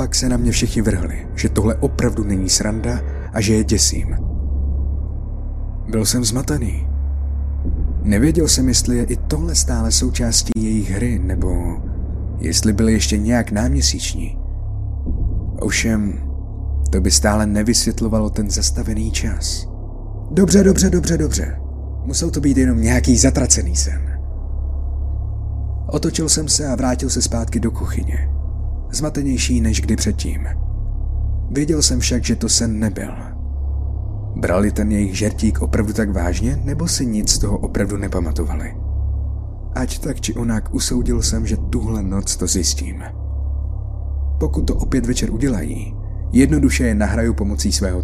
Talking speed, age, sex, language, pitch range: 135 wpm, 30-49, male, Czech, 70-105 Hz